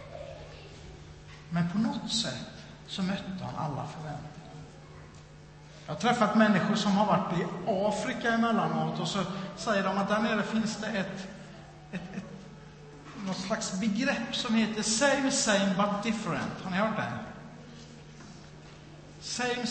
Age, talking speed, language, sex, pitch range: 60-79, 140 wpm, Swedish, male, 160-220 Hz